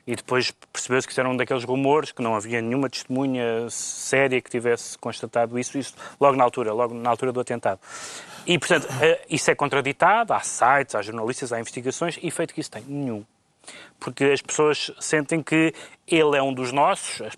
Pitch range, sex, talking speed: 120-160 Hz, male, 190 wpm